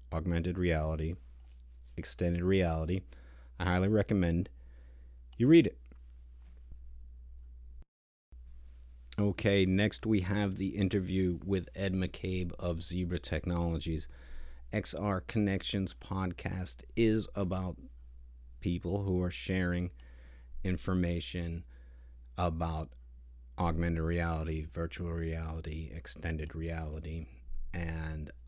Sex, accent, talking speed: male, American, 85 wpm